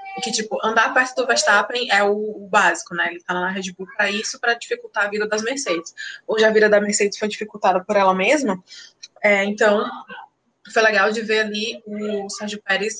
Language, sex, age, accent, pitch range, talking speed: Portuguese, female, 20-39, Brazilian, 200-260 Hz, 210 wpm